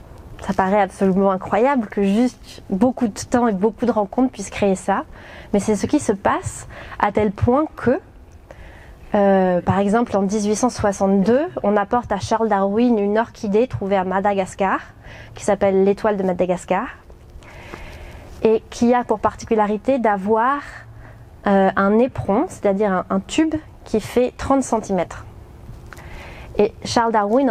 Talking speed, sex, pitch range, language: 140 wpm, female, 195-230 Hz, French